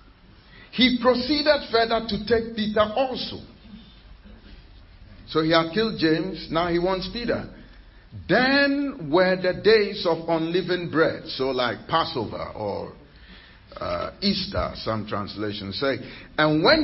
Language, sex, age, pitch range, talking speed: English, male, 50-69, 150-205 Hz, 120 wpm